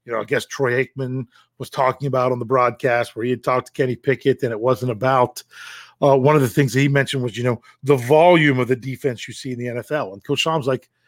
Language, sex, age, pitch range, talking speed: English, male, 40-59, 130-175 Hz, 265 wpm